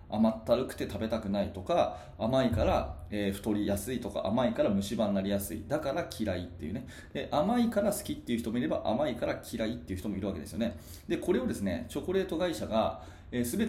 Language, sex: Japanese, male